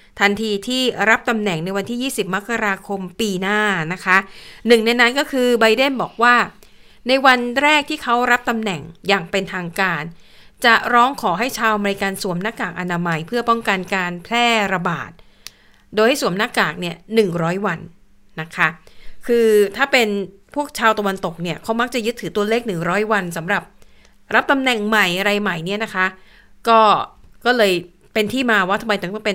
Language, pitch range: Thai, 185-230 Hz